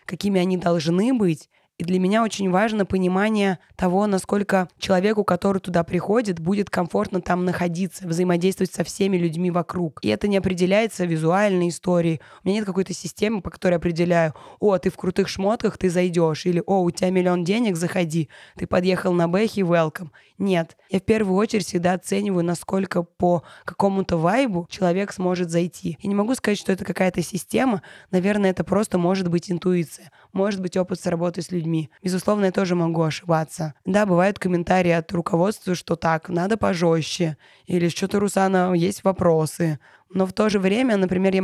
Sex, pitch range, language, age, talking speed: female, 175-200 Hz, Russian, 20-39, 170 wpm